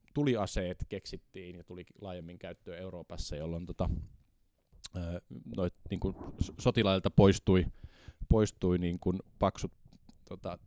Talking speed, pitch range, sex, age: 110 wpm, 85-100 Hz, male, 20-39